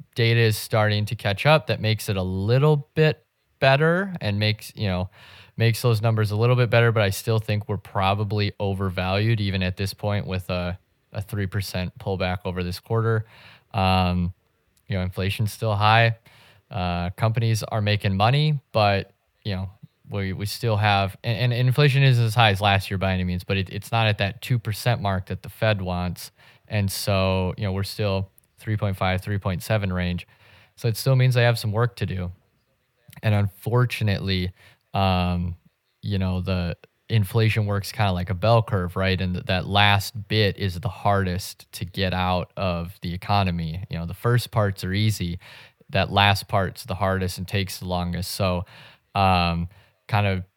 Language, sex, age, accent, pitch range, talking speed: English, male, 20-39, American, 95-115 Hz, 180 wpm